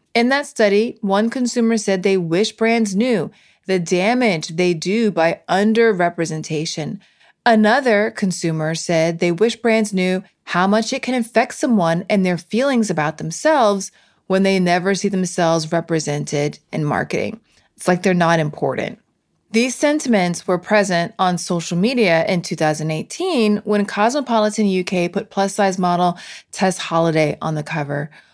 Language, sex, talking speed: English, female, 145 wpm